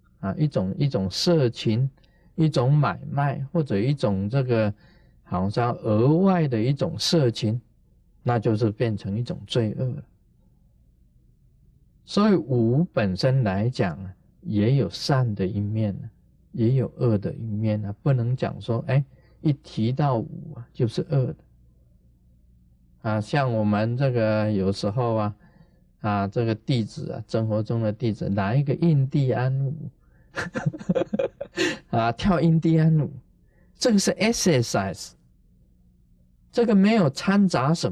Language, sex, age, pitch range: Chinese, male, 50-69, 105-150 Hz